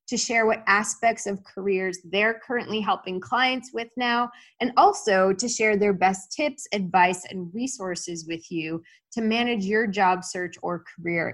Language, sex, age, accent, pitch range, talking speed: English, female, 20-39, American, 180-240 Hz, 165 wpm